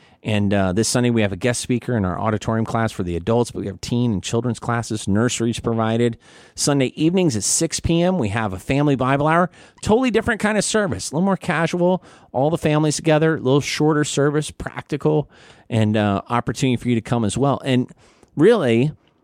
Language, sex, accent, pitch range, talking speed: English, male, American, 110-135 Hz, 205 wpm